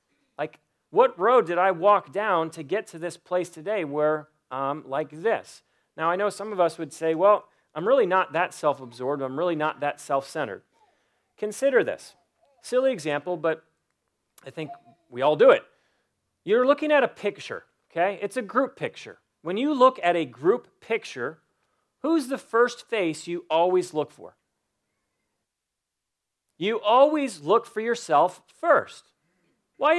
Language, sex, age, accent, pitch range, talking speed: English, male, 40-59, American, 165-245 Hz, 160 wpm